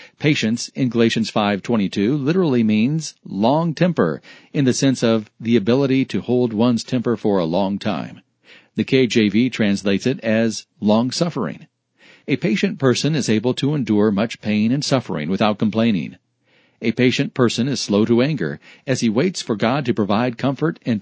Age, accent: 40-59, American